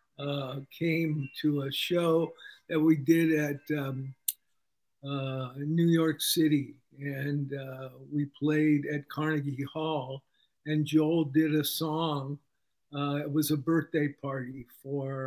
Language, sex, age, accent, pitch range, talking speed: English, male, 50-69, American, 140-155 Hz, 130 wpm